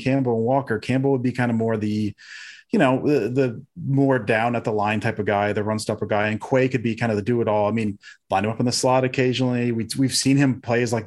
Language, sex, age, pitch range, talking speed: English, male, 30-49, 110-130 Hz, 265 wpm